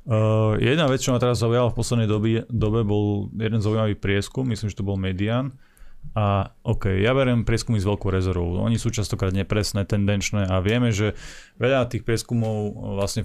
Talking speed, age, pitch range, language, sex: 180 wpm, 20-39, 100-115 Hz, Slovak, male